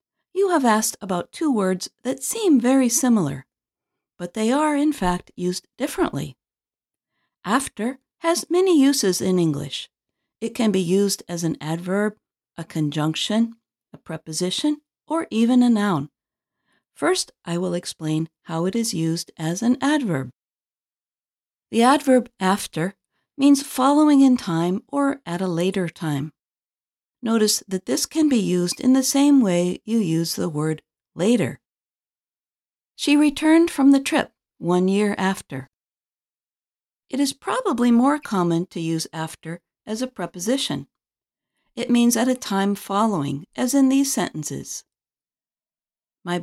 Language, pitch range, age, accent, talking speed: English, 170-260 Hz, 50-69, American, 135 wpm